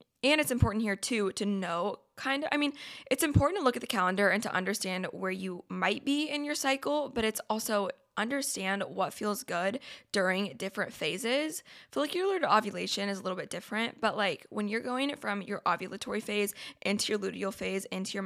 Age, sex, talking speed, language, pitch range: 20-39, female, 200 wpm, English, 195-240 Hz